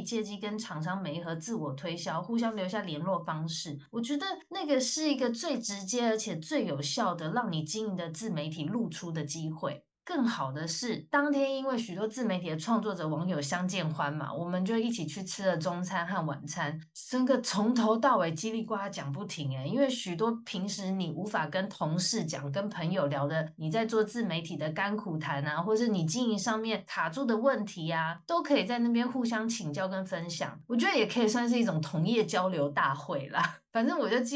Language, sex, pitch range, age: Chinese, female, 160-230 Hz, 20-39